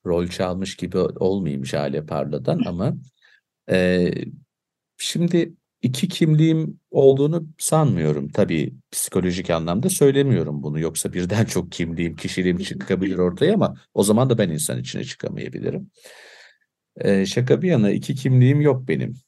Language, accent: Turkish, native